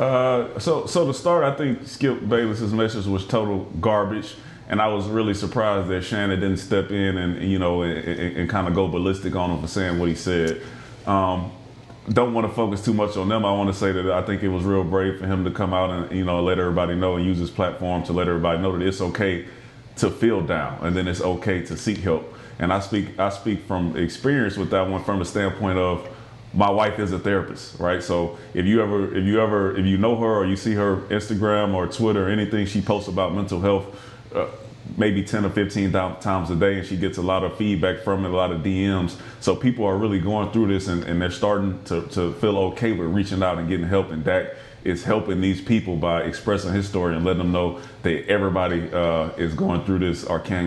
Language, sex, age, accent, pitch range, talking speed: English, male, 30-49, American, 90-105 Hz, 240 wpm